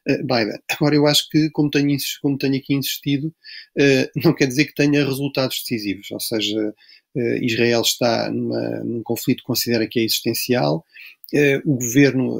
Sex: male